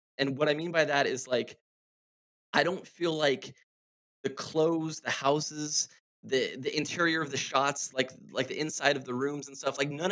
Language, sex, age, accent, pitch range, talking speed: English, male, 20-39, American, 125-160 Hz, 195 wpm